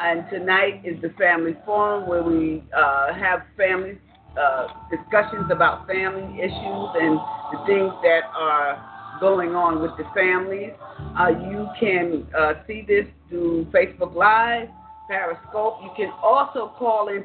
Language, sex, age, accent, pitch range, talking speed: English, female, 40-59, American, 180-225 Hz, 145 wpm